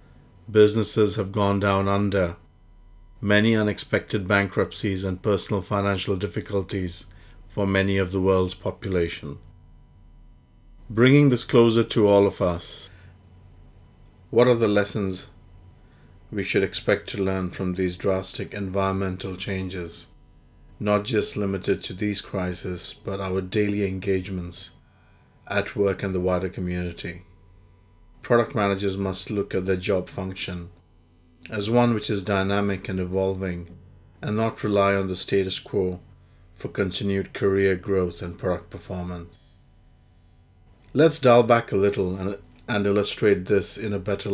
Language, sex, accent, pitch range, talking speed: English, male, Indian, 90-100 Hz, 130 wpm